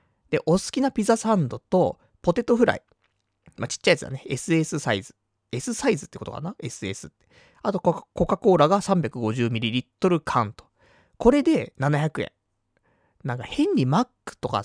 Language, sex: Japanese, male